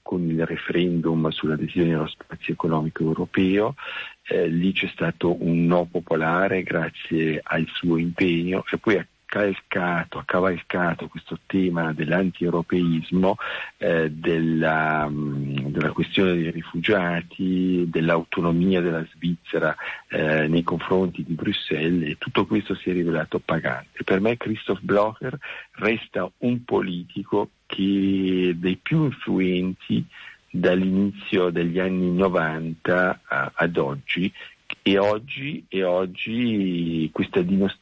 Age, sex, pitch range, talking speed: 50-69, male, 80-95 Hz, 115 wpm